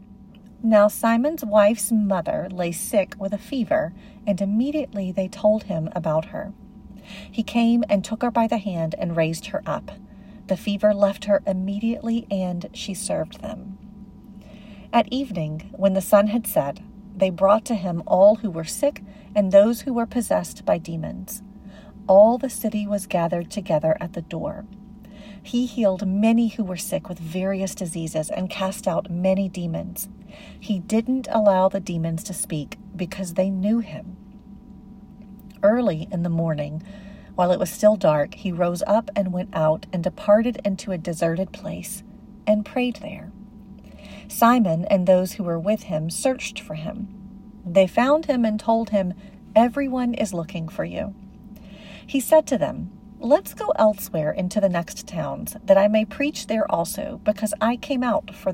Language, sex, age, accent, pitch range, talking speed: English, female, 40-59, American, 190-215 Hz, 165 wpm